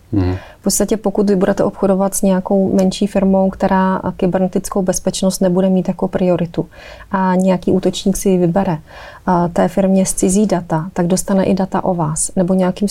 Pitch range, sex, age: 175-195 Hz, female, 30-49